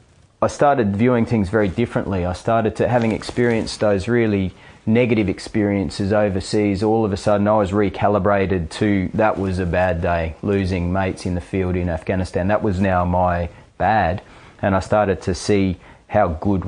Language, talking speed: English, 175 wpm